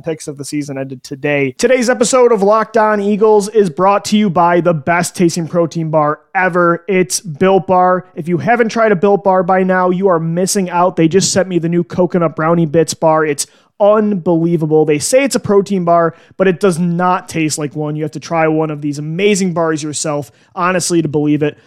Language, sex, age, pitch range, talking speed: English, male, 30-49, 155-200 Hz, 215 wpm